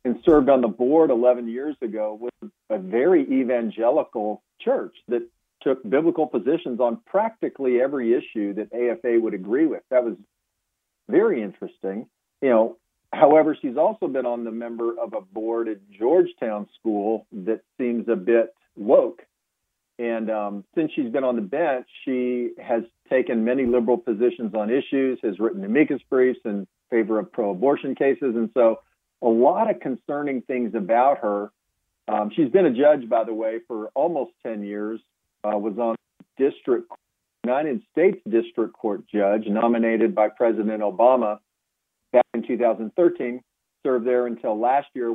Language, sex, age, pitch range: English, male, 50-69, 110-140 Hz